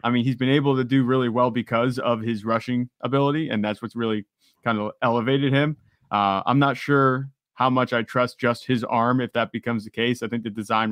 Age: 20-39